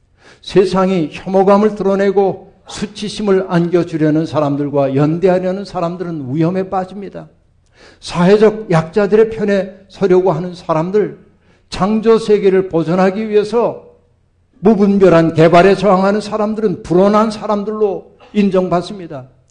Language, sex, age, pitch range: Korean, male, 60-79, 130-185 Hz